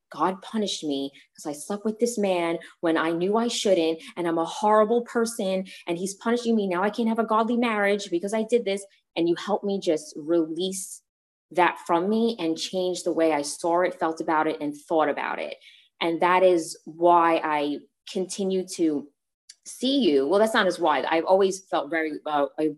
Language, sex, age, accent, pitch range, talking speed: English, female, 20-39, American, 155-190 Hz, 205 wpm